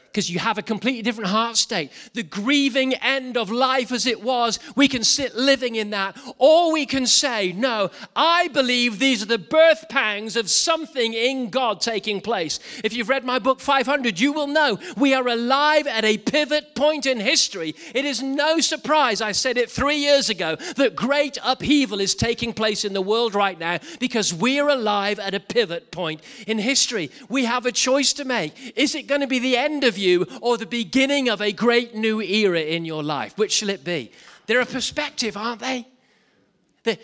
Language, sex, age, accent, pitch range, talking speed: English, male, 40-59, British, 195-265 Hz, 205 wpm